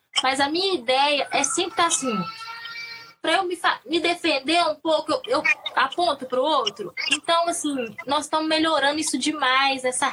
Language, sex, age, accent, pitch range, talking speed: Portuguese, female, 10-29, Brazilian, 245-335 Hz, 180 wpm